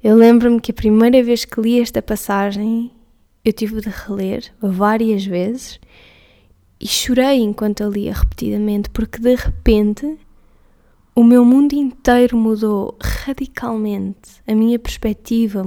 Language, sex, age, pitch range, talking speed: Portuguese, female, 20-39, 195-225 Hz, 130 wpm